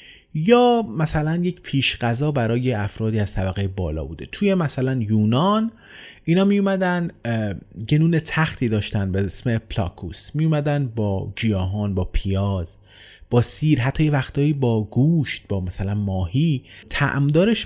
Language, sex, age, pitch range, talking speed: Persian, male, 30-49, 100-140 Hz, 135 wpm